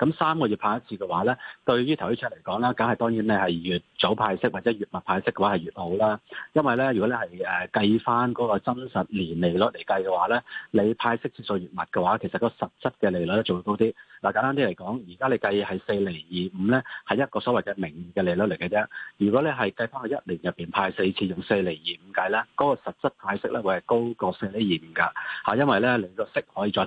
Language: Chinese